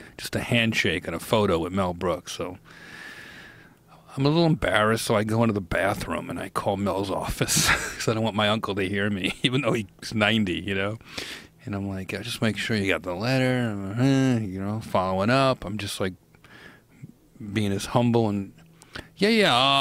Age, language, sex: 40-59, English, male